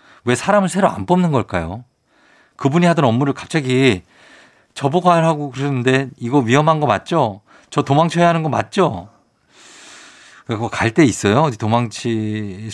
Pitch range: 105-150 Hz